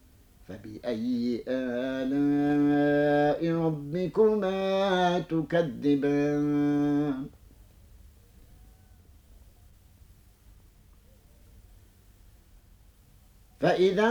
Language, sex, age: Arabic, male, 50-69